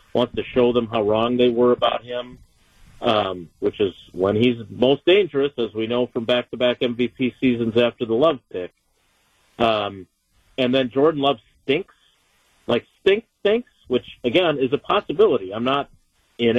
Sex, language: male, English